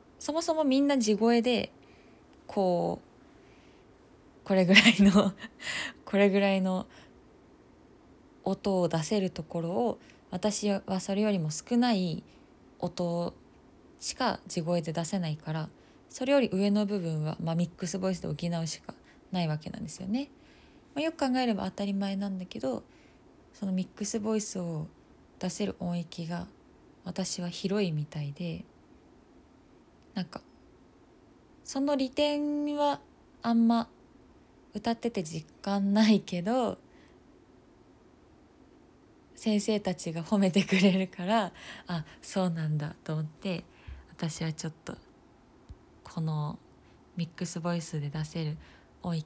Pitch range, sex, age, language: 170-215 Hz, female, 20-39, Japanese